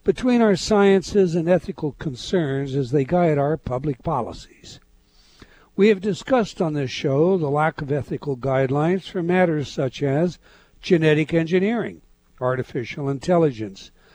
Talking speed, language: 130 wpm, English